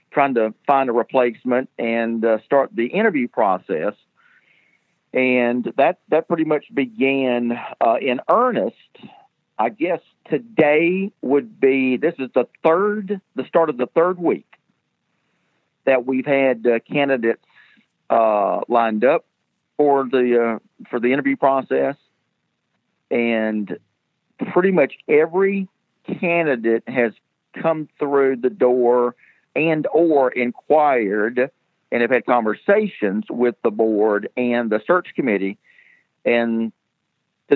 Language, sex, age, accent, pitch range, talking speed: English, male, 50-69, American, 110-140 Hz, 120 wpm